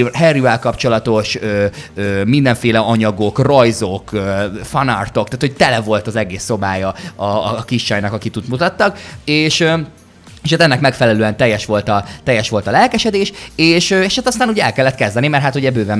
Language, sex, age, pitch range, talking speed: Hungarian, male, 20-39, 100-135 Hz, 180 wpm